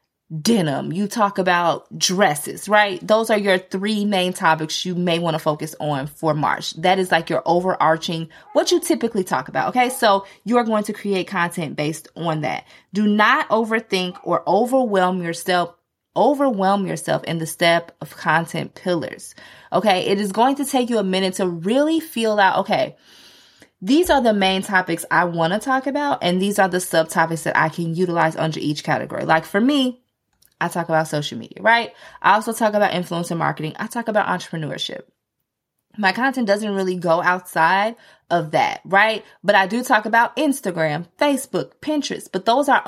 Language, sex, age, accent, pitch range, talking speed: English, female, 20-39, American, 170-230 Hz, 180 wpm